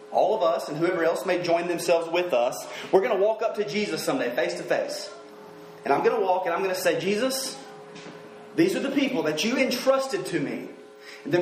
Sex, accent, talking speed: male, American, 225 wpm